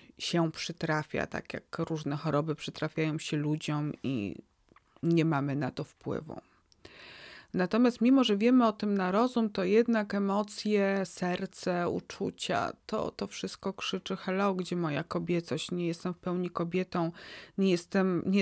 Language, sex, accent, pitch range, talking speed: Polish, female, native, 165-195 Hz, 140 wpm